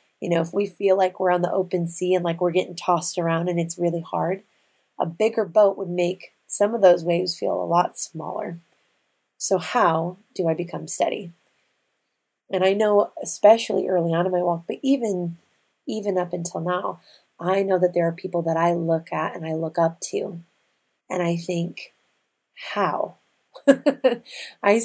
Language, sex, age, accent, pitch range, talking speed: English, female, 30-49, American, 170-195 Hz, 180 wpm